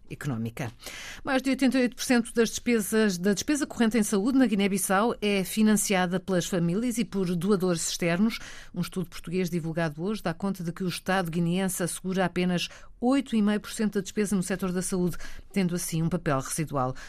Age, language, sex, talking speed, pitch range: 50-69, Portuguese, female, 165 wpm, 170-205 Hz